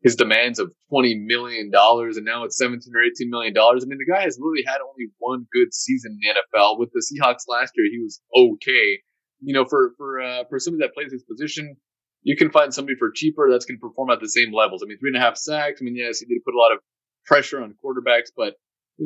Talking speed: 260 wpm